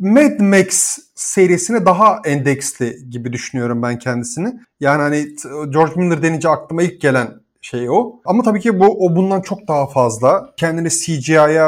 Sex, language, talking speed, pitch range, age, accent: male, Turkish, 155 wpm, 145-200 Hz, 30-49, native